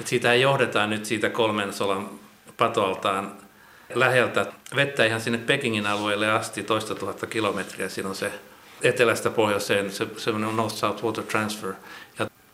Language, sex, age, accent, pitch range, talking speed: Finnish, male, 60-79, native, 105-125 Hz, 135 wpm